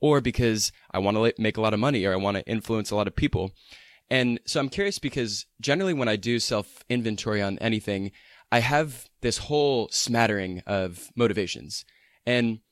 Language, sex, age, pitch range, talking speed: English, male, 20-39, 100-120 Hz, 185 wpm